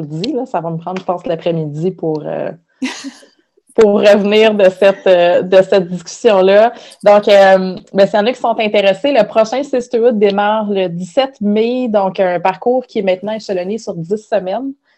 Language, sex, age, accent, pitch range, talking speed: French, female, 30-49, Canadian, 175-210 Hz, 165 wpm